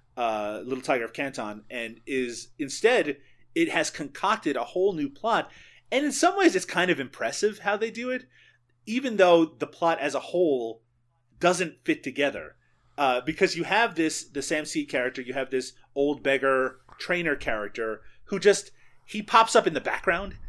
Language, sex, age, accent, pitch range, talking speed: English, male, 30-49, American, 130-180 Hz, 180 wpm